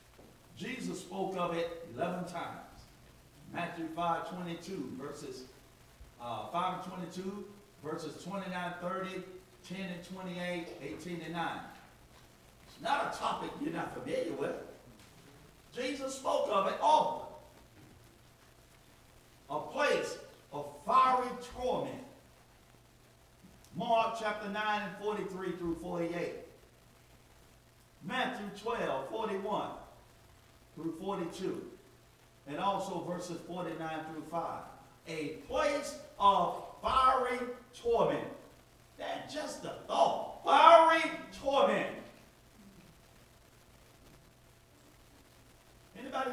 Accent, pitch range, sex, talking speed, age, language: American, 170-230 Hz, male, 95 wpm, 50-69, English